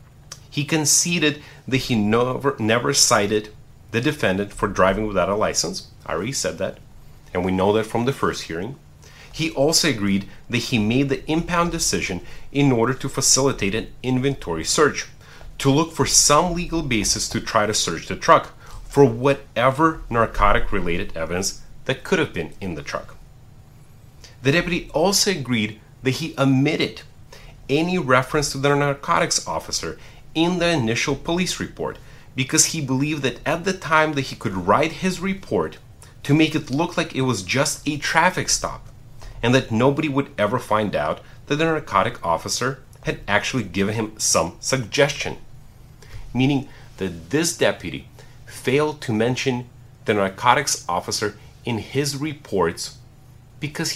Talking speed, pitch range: 150 wpm, 115-145 Hz